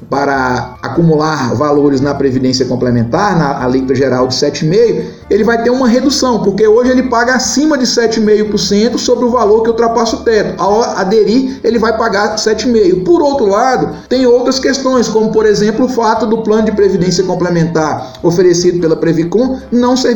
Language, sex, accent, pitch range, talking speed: Portuguese, male, Brazilian, 180-245 Hz, 175 wpm